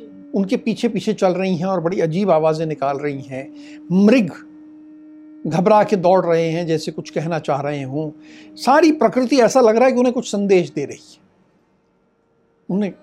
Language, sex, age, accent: Hindi, male, 60-79, native